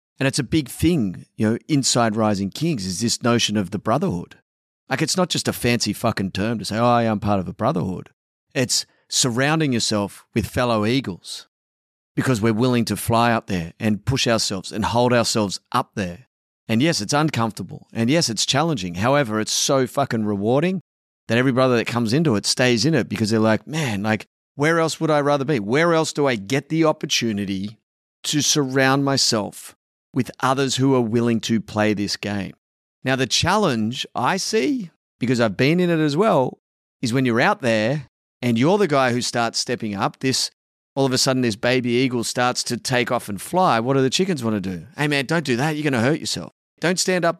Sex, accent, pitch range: male, Australian, 105-155 Hz